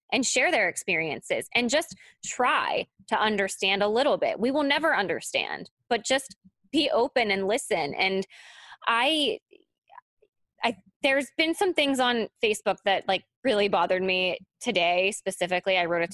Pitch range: 195-255 Hz